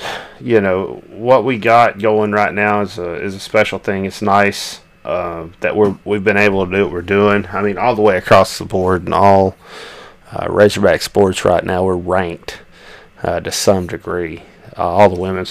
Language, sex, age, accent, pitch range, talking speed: English, male, 30-49, American, 95-110 Hz, 200 wpm